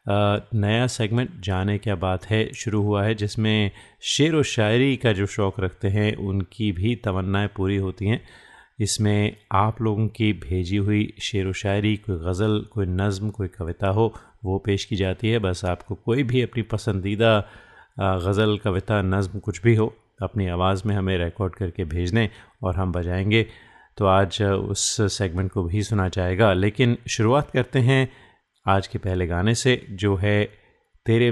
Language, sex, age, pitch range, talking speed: Hindi, male, 30-49, 95-110 Hz, 170 wpm